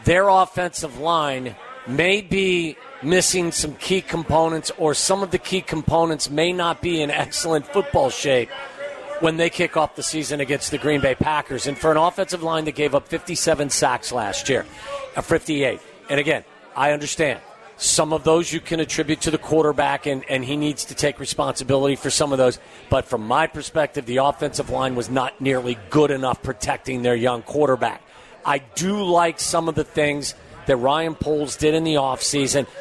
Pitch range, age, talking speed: 140-175 Hz, 40-59, 185 wpm